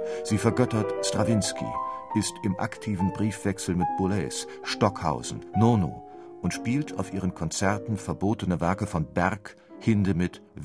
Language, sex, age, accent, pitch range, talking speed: German, male, 50-69, German, 95-120 Hz, 120 wpm